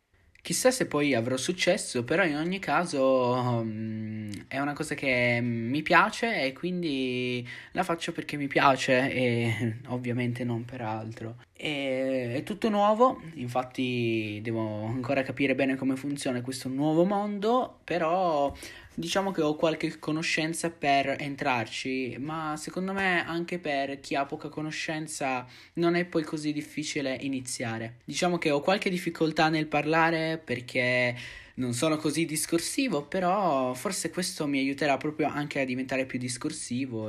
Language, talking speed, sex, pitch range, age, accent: Italian, 140 wpm, male, 120-160 Hz, 20-39, native